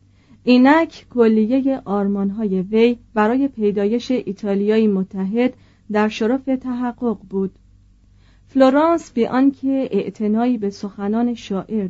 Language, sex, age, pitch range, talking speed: Persian, female, 40-59, 195-240 Hz, 95 wpm